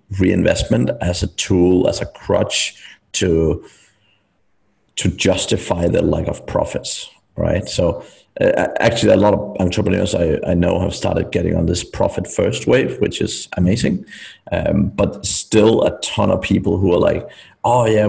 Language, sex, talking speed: English, male, 155 wpm